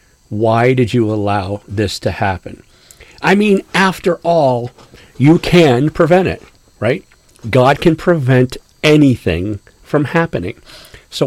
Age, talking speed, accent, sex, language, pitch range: 50-69, 120 wpm, American, male, English, 115-150 Hz